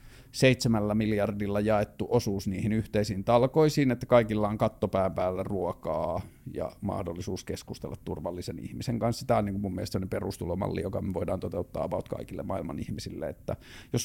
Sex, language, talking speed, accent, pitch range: male, Finnish, 150 wpm, native, 105-130 Hz